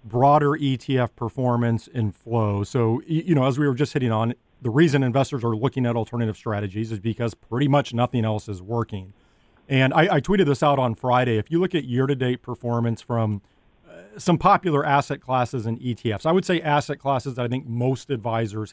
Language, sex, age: English, male, 40-59